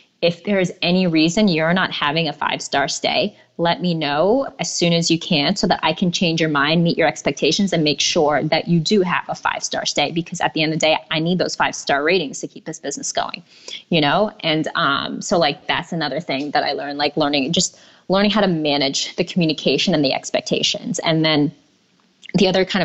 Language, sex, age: English, female, 20-39